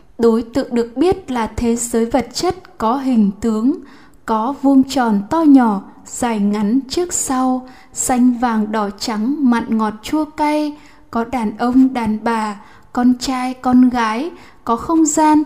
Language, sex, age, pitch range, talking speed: Vietnamese, female, 10-29, 230-270 Hz, 160 wpm